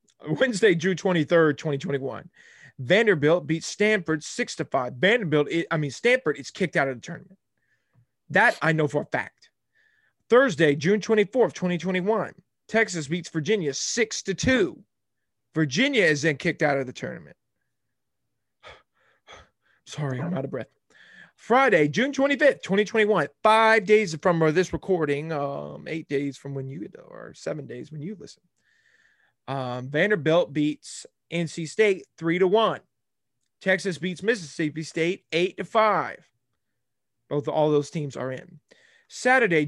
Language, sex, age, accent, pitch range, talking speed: English, male, 30-49, American, 150-210 Hz, 140 wpm